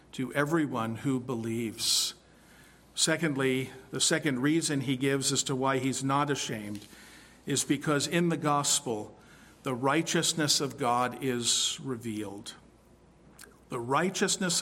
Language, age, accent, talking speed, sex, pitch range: English, 50-69, American, 120 wpm, male, 135-160 Hz